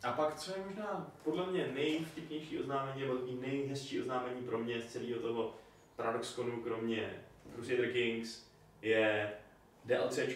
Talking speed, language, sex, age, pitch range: 145 wpm, Czech, male, 20-39, 120-145 Hz